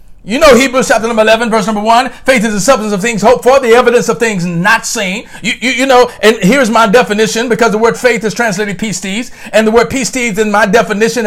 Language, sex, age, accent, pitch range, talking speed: English, male, 50-69, American, 220-275 Hz, 250 wpm